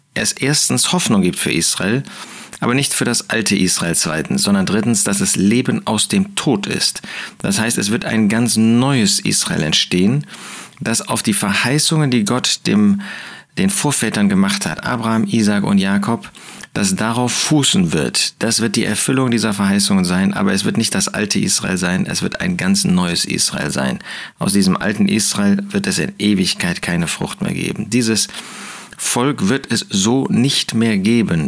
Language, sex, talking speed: German, male, 175 wpm